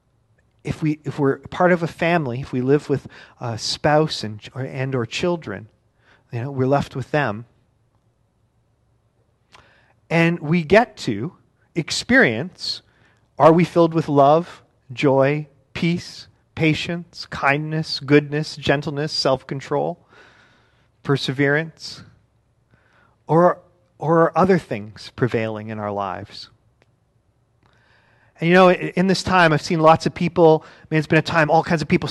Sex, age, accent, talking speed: male, 40-59, American, 135 wpm